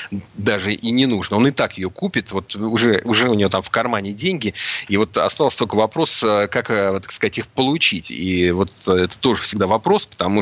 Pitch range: 95-115 Hz